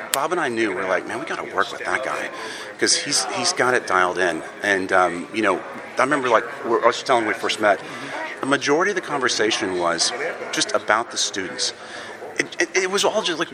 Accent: American